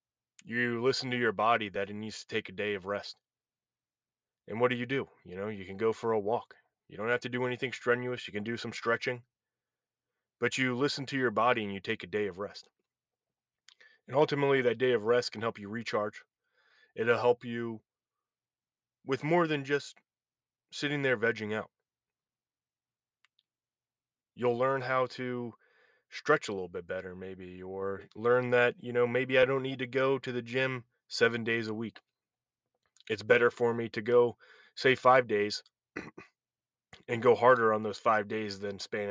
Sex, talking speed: male, 185 wpm